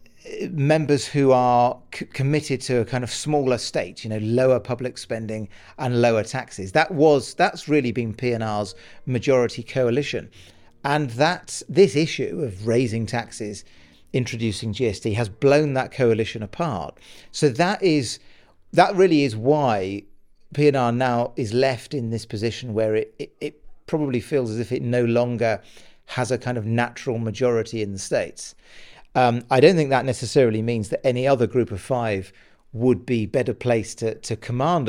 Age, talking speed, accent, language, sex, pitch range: 40-59, 165 wpm, British, English, male, 110-135 Hz